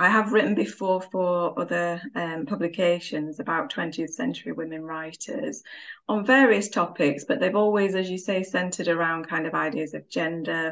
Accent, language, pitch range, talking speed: British, English, 165-200 Hz, 160 wpm